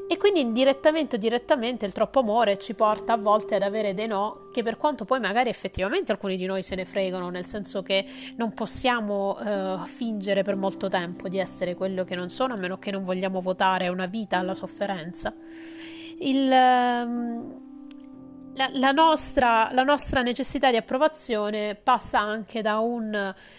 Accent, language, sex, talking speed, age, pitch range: native, Italian, female, 165 wpm, 30-49, 195-245 Hz